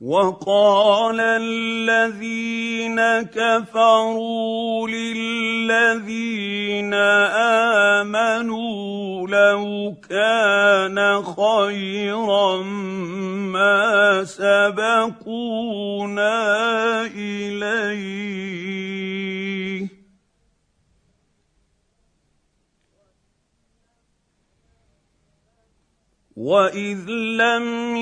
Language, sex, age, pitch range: Arabic, male, 50-69, 200-230 Hz